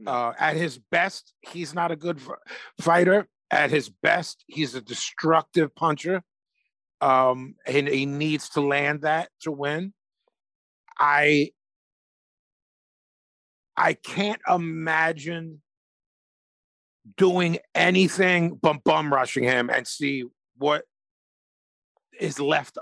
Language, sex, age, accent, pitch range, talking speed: English, male, 40-59, American, 140-190 Hz, 110 wpm